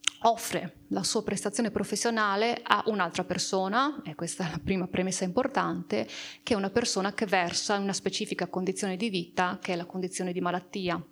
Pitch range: 180-205 Hz